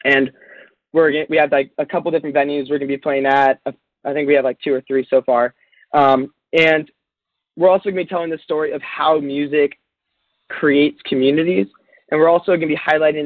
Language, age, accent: English, 20-39, American